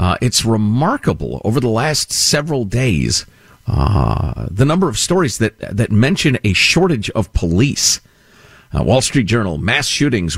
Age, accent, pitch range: 50-69, American, 95-135 Hz